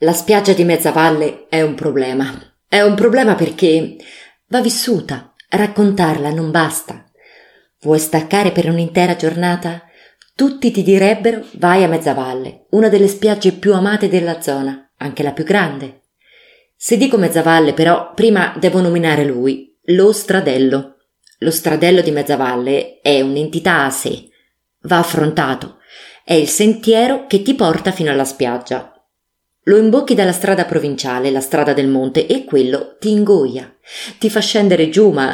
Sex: female